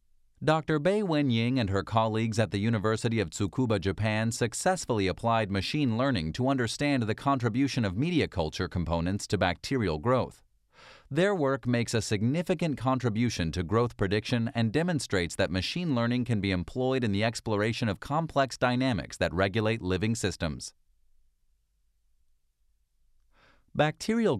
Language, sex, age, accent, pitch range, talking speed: English, male, 30-49, American, 95-125 Hz, 135 wpm